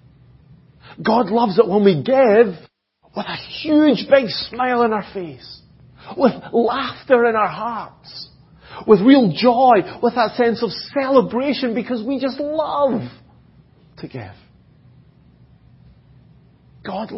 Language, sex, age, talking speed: English, male, 40-59, 120 wpm